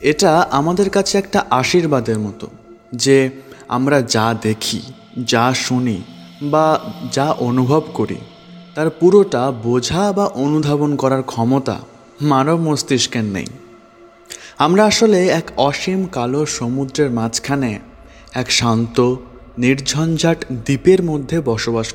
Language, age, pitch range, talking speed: Bengali, 20-39, 115-150 Hz, 105 wpm